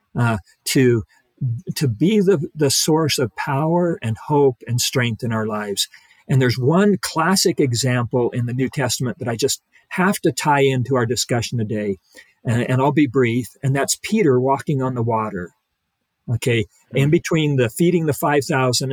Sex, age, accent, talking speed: male, 50-69, American, 170 wpm